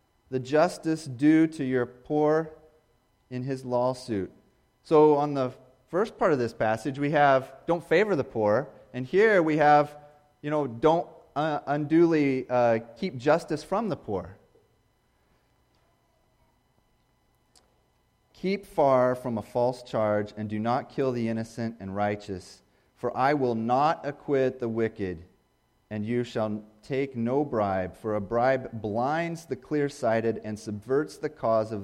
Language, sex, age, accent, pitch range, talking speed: English, male, 30-49, American, 115-150 Hz, 140 wpm